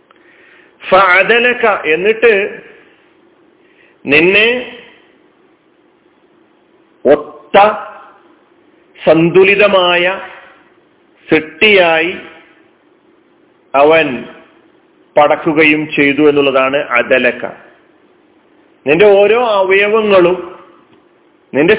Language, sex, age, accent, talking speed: Malayalam, male, 40-59, native, 40 wpm